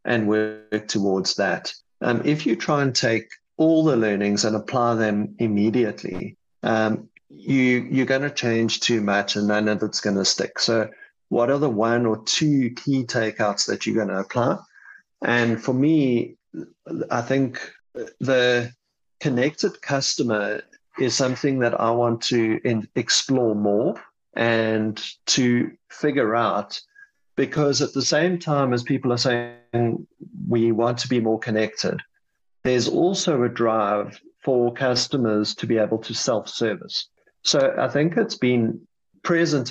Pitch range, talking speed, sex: 110-135 Hz, 145 wpm, male